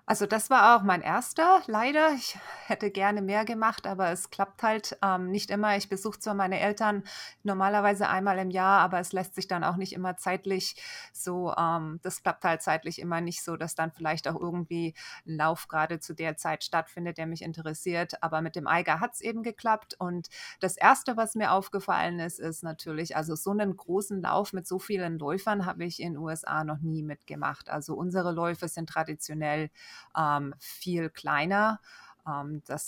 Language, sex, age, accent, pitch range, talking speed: German, female, 20-39, German, 160-195 Hz, 190 wpm